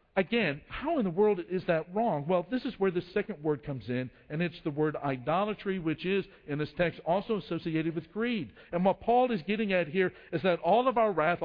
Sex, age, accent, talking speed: male, 60-79, American, 230 wpm